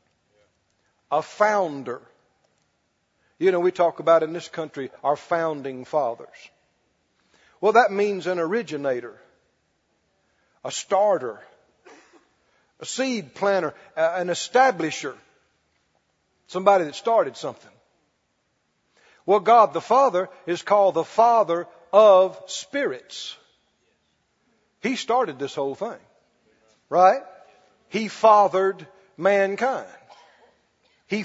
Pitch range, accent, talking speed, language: 175-225 Hz, American, 95 wpm, English